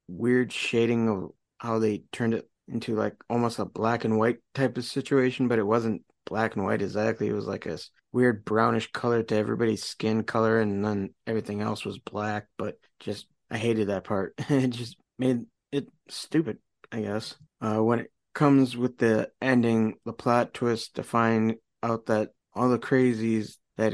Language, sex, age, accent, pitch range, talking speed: English, male, 20-39, American, 105-125 Hz, 180 wpm